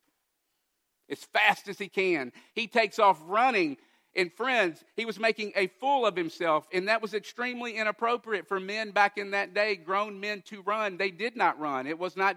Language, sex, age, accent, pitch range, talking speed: English, male, 50-69, American, 190-245 Hz, 195 wpm